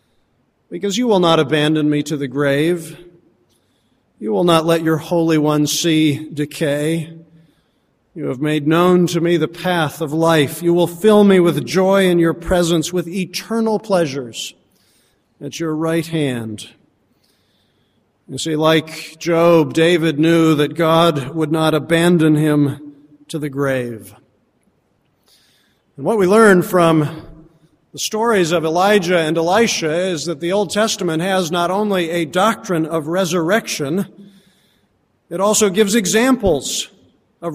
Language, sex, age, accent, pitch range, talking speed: English, male, 40-59, American, 155-190 Hz, 140 wpm